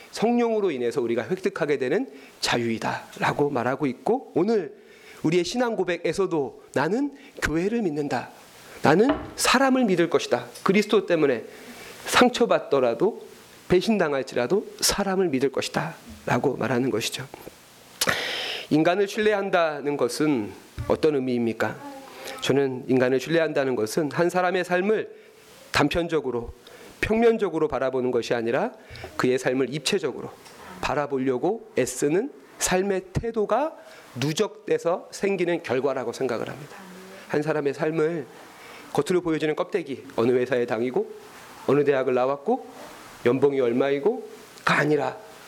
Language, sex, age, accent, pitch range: Korean, male, 40-59, native, 145-225 Hz